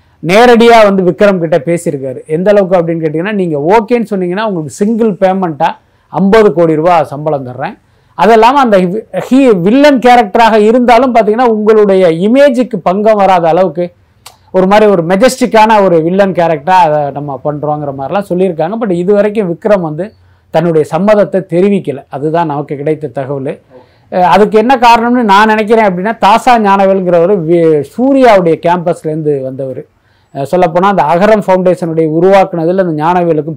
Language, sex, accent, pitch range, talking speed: Tamil, male, native, 160-215 Hz, 135 wpm